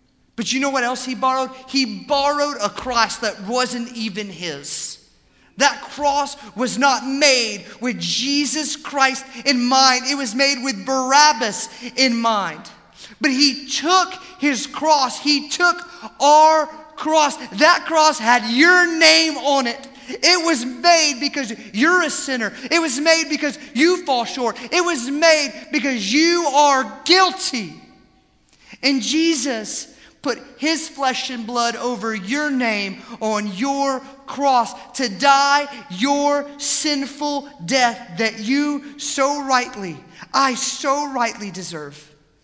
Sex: male